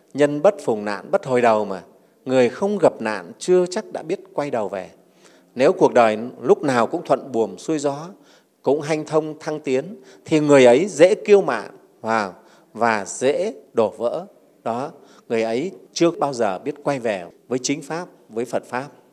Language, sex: Vietnamese, male